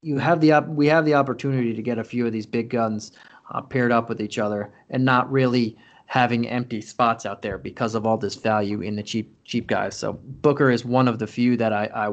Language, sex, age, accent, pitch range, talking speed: English, male, 30-49, American, 115-135 Hz, 240 wpm